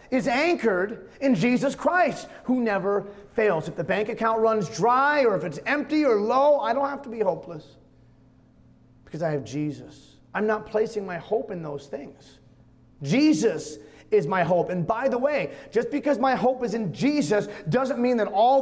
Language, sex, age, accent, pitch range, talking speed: English, male, 30-49, American, 190-270 Hz, 185 wpm